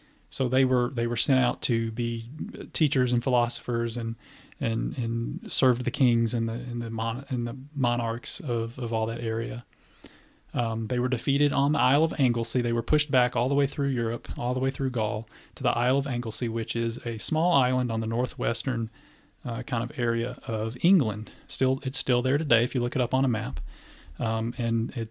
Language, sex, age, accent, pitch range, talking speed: English, male, 30-49, American, 115-135 Hz, 215 wpm